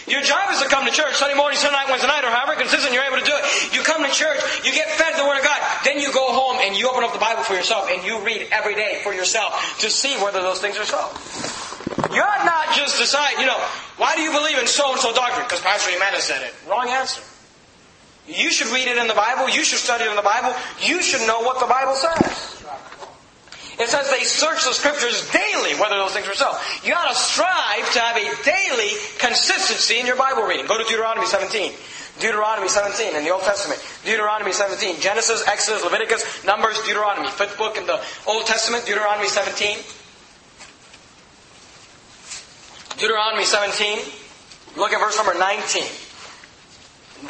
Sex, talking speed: male, 200 wpm